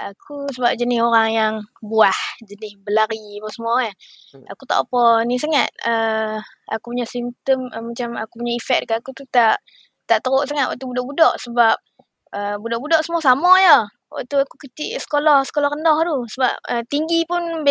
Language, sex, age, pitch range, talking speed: Malay, female, 20-39, 230-285 Hz, 170 wpm